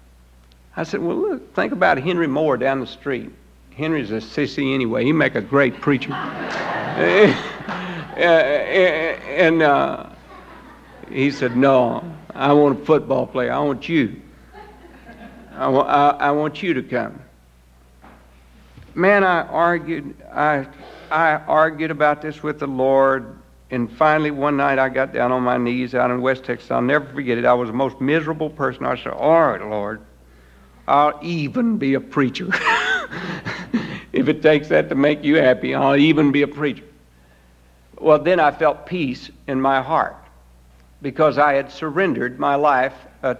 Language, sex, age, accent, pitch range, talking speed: English, male, 60-79, American, 115-155 Hz, 160 wpm